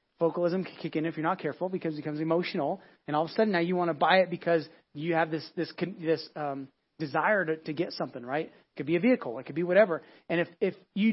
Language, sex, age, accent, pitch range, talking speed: English, male, 30-49, American, 155-200 Hz, 265 wpm